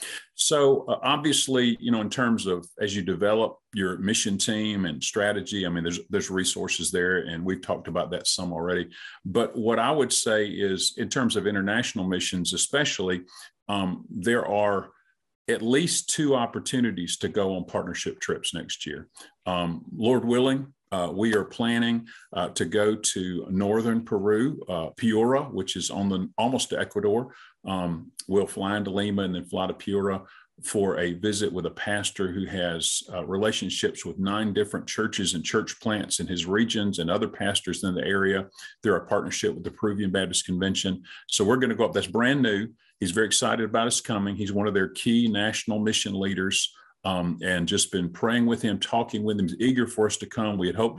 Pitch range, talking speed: 95-115 Hz, 190 wpm